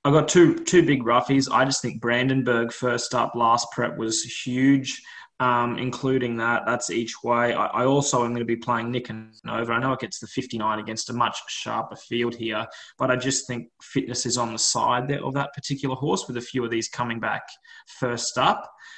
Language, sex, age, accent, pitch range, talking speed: English, male, 20-39, Australian, 115-130 Hz, 210 wpm